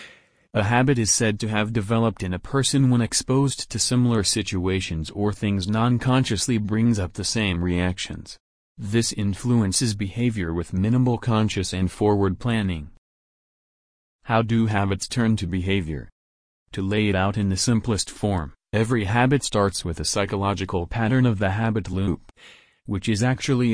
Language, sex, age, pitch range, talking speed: English, male, 40-59, 95-115 Hz, 150 wpm